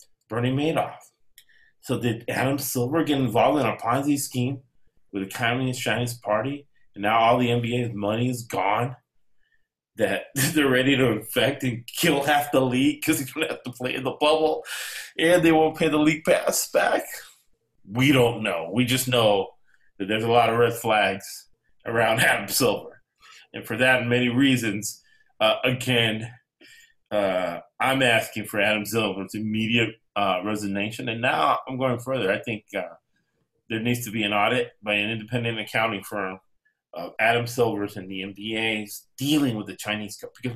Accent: American